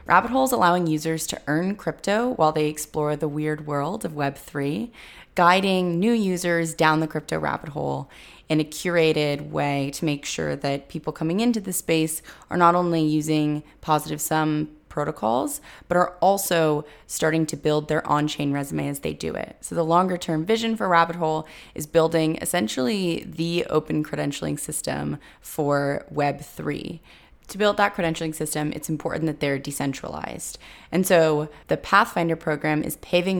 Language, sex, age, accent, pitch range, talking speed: English, female, 20-39, American, 150-180 Hz, 165 wpm